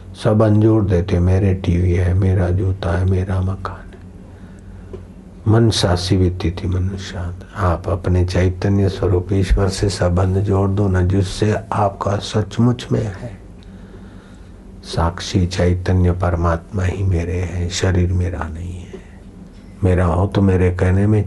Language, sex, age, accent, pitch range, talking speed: Hindi, male, 60-79, native, 90-95 Hz, 135 wpm